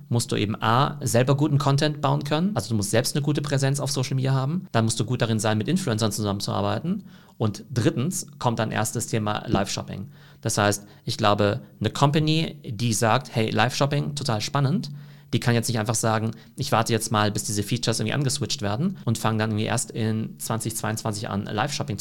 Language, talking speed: German, 200 wpm